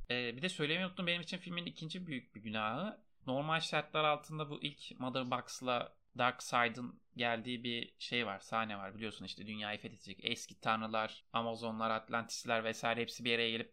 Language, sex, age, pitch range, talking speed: Turkish, male, 30-49, 115-165 Hz, 160 wpm